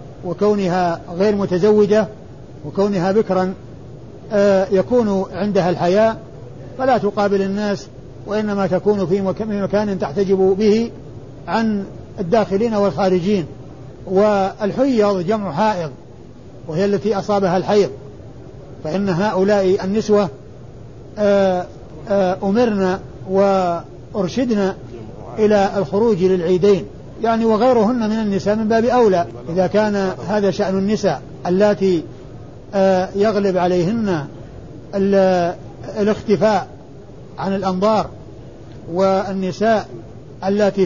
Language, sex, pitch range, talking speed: Arabic, male, 155-205 Hz, 80 wpm